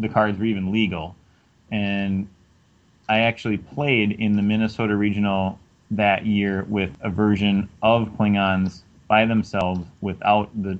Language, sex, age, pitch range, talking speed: English, male, 20-39, 95-105 Hz, 135 wpm